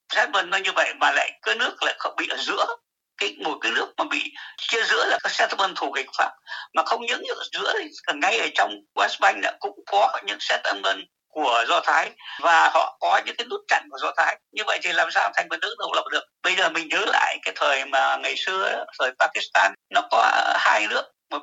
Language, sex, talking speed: Vietnamese, male, 225 wpm